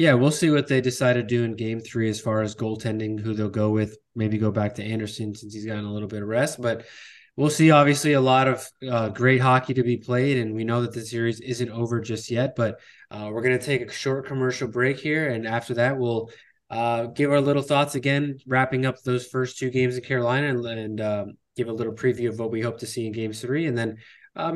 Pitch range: 115-135 Hz